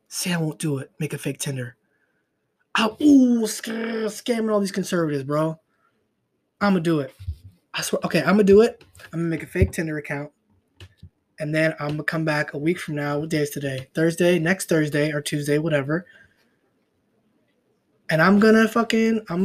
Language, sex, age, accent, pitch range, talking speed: English, male, 20-39, American, 150-200 Hz, 195 wpm